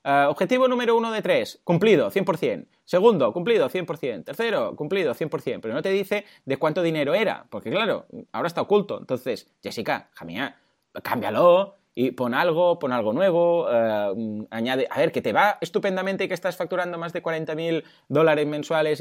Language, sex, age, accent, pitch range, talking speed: Spanish, male, 20-39, Spanish, 130-195 Hz, 190 wpm